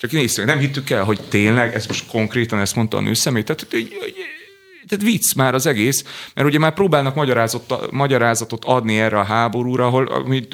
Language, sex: Hungarian, male